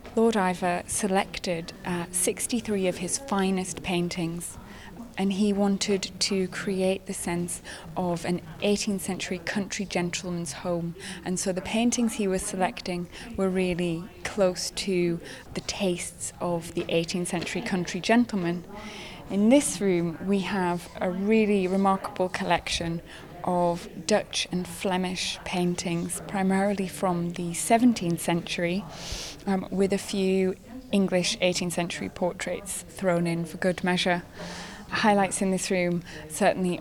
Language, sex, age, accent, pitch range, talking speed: English, female, 20-39, British, 175-195 Hz, 130 wpm